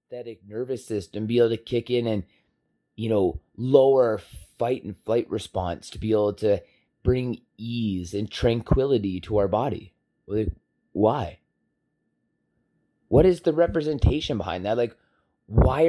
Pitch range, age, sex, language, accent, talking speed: 105-135 Hz, 30-49, male, English, American, 135 wpm